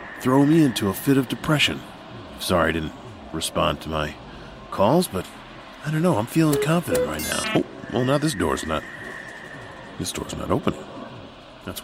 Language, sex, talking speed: English, male, 170 wpm